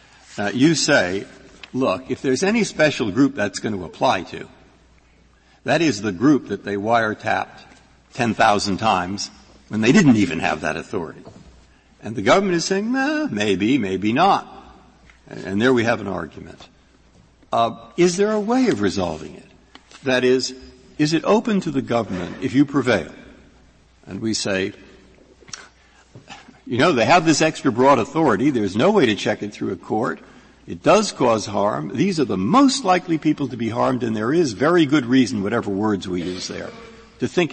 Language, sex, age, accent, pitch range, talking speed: English, male, 60-79, American, 100-165 Hz, 175 wpm